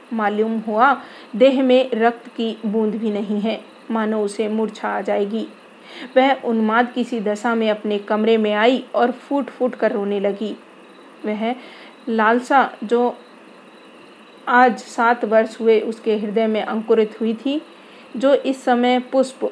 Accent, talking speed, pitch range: native, 145 wpm, 215-240 Hz